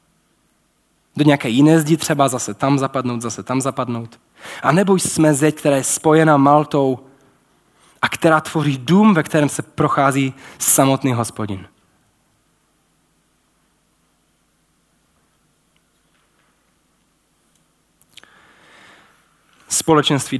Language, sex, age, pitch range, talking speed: Czech, male, 20-39, 130-170 Hz, 90 wpm